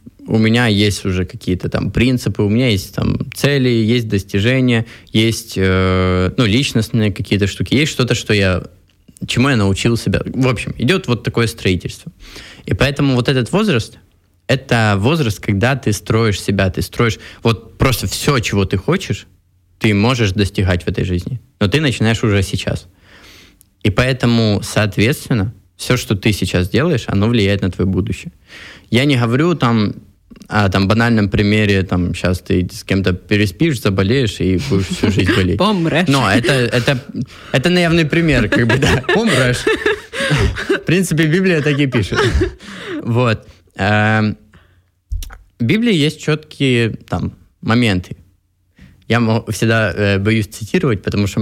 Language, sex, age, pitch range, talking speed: Ukrainian, male, 20-39, 95-125 Hz, 135 wpm